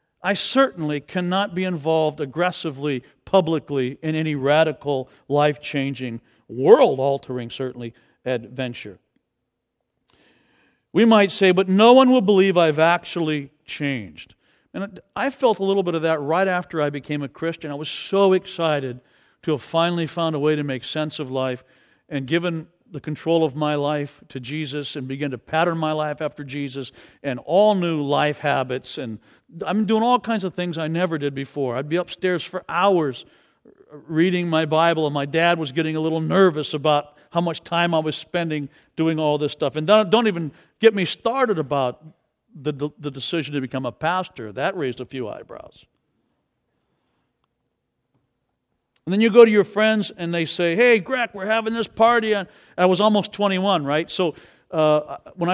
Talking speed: 170 wpm